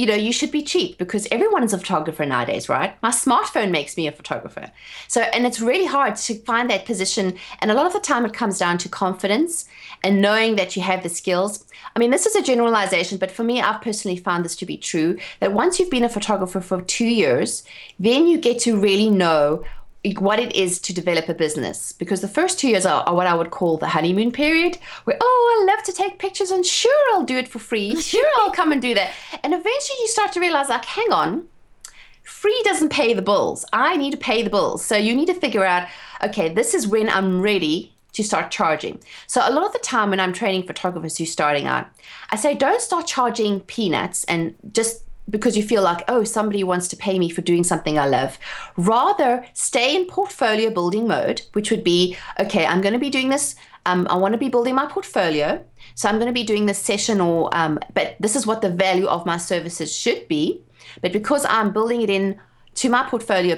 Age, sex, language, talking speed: 30-49, female, English, 230 wpm